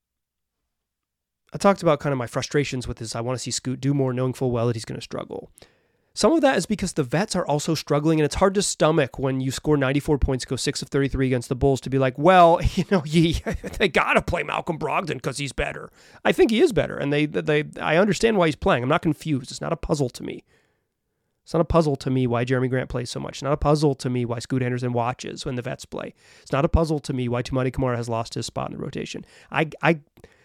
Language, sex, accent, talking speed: English, male, American, 260 wpm